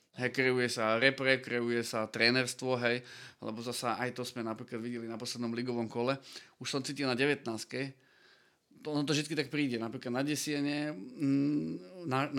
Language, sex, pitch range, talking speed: Slovak, male, 115-135 Hz, 155 wpm